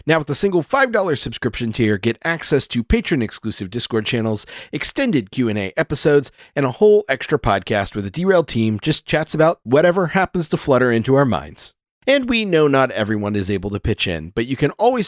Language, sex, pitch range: English, male, 110-170 Hz